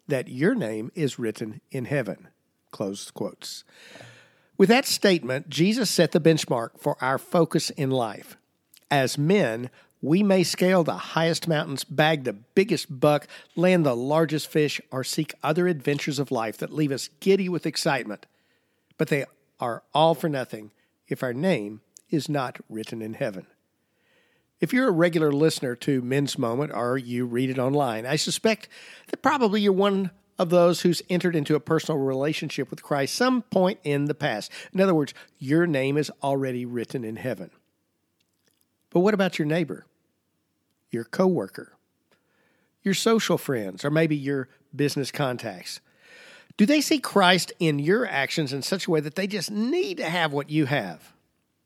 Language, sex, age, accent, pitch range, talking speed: English, male, 60-79, American, 135-180 Hz, 165 wpm